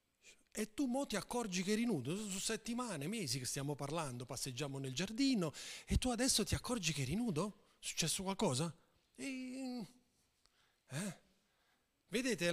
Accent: native